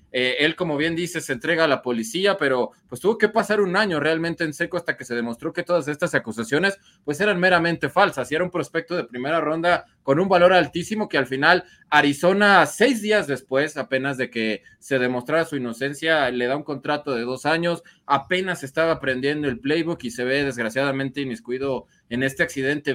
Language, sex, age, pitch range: Spanish, male, 20-39, 125-165 Hz